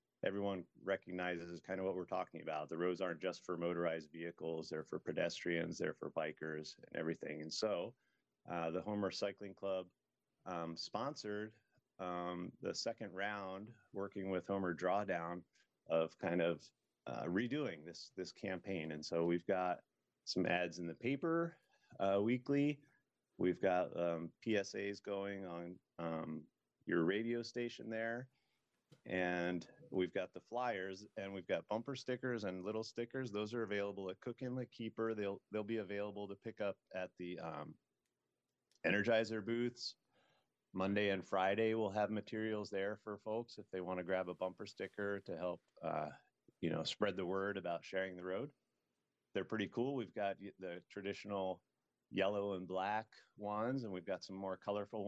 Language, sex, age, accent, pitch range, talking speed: English, male, 30-49, American, 90-105 Hz, 160 wpm